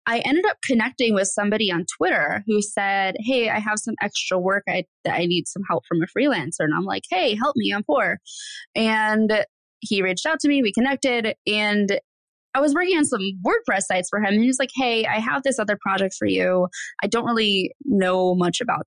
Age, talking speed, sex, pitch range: 20-39, 215 wpm, female, 180-230 Hz